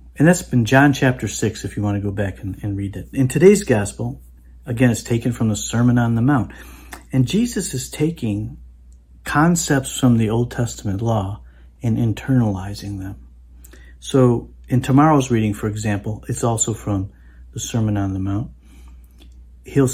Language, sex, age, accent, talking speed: English, male, 50-69, American, 170 wpm